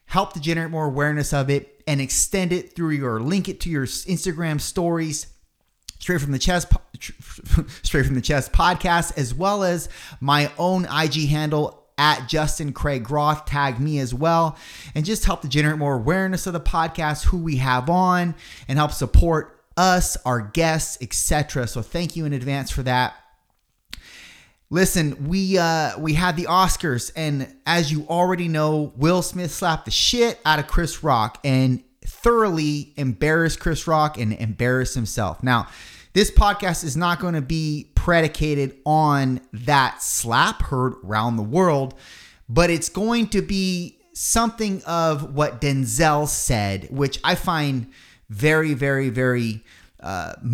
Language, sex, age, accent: English, male, 30-49, American